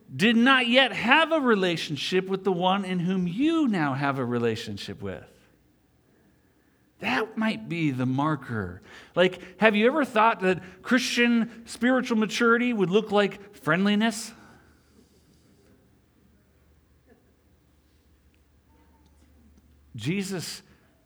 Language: English